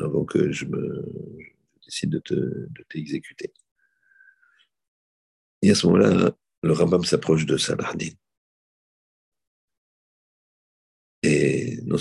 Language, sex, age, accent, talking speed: French, male, 50-69, French, 95 wpm